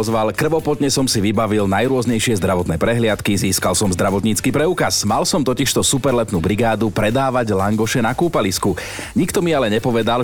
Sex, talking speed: male, 145 wpm